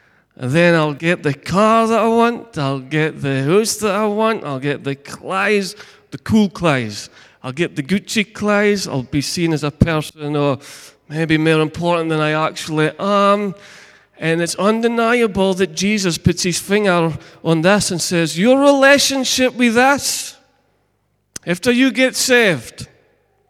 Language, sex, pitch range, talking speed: English, male, 155-210 Hz, 160 wpm